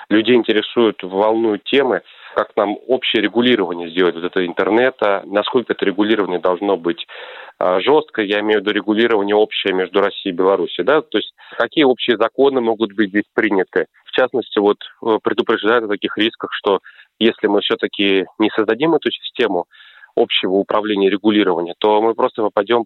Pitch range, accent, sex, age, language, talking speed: 105-130 Hz, native, male, 30-49, Russian, 160 wpm